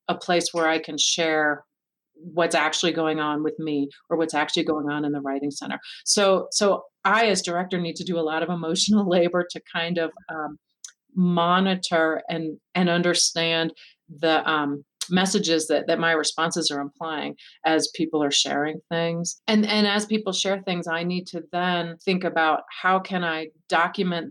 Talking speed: 180 wpm